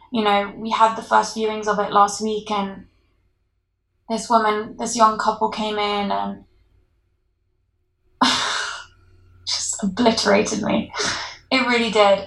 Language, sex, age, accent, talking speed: English, female, 20-39, British, 125 wpm